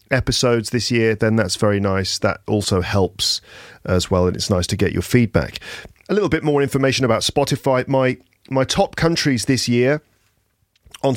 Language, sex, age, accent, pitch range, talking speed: English, male, 40-59, British, 105-145 Hz, 175 wpm